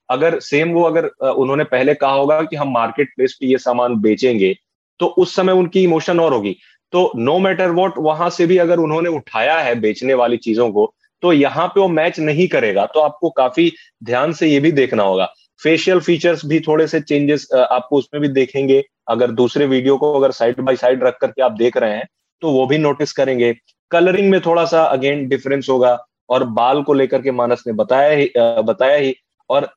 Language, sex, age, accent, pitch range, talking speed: Hindi, male, 30-49, native, 130-170 Hz, 205 wpm